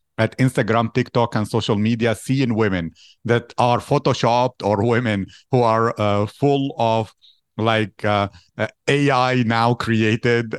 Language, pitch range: English, 110-125 Hz